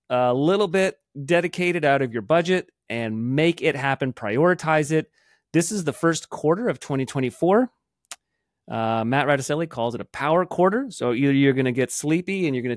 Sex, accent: male, American